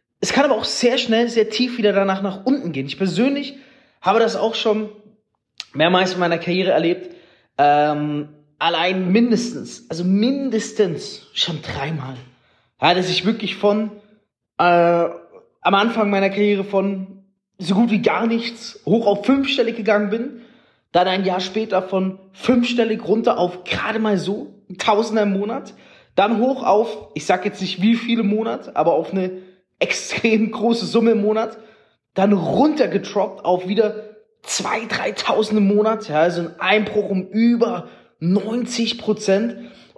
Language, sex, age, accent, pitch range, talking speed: German, male, 30-49, German, 185-230 Hz, 145 wpm